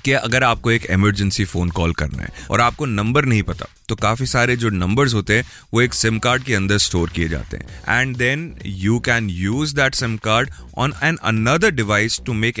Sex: male